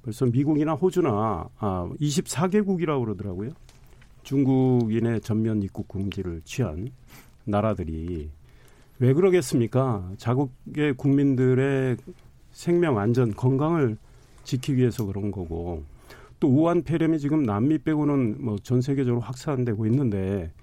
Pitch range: 110-150 Hz